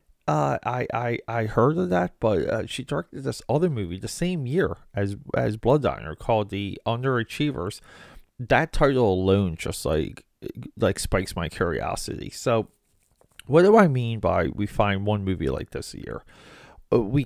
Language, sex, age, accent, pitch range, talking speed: English, male, 30-49, American, 95-125 Hz, 165 wpm